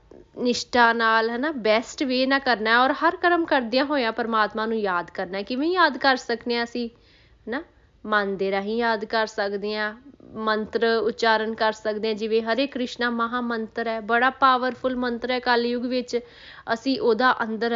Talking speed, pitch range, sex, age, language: 175 wpm, 210-245 Hz, female, 20-39, Punjabi